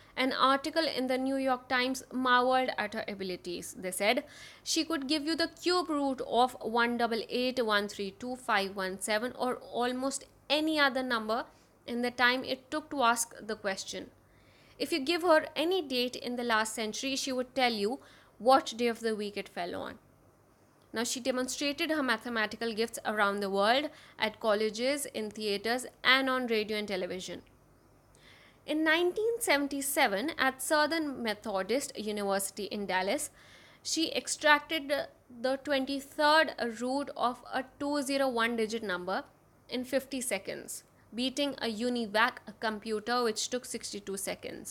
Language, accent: English, Indian